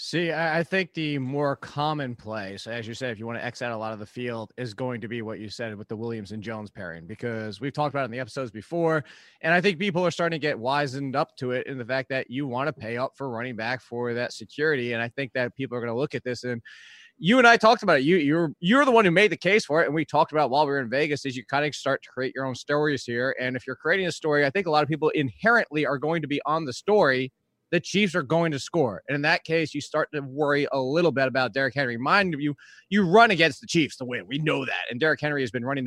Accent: American